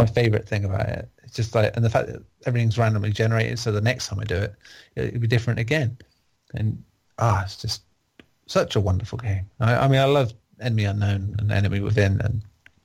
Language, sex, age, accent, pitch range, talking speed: English, male, 30-49, British, 100-115 Hz, 215 wpm